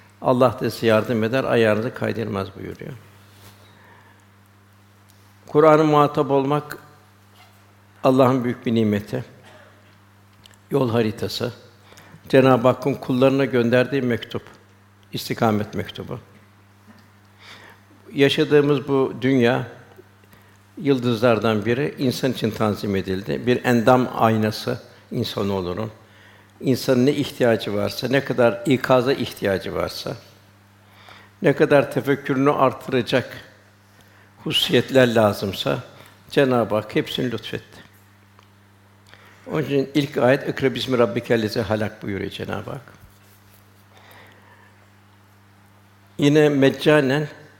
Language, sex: Turkish, male